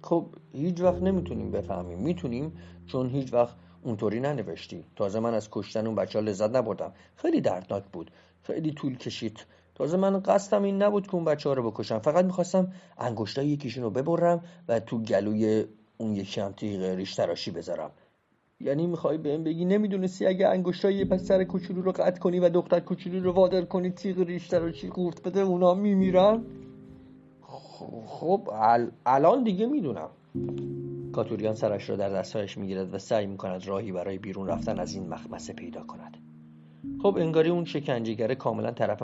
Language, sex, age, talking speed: Persian, male, 50-69, 170 wpm